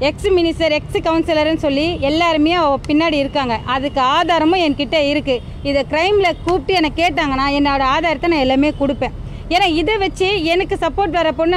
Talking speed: 155 wpm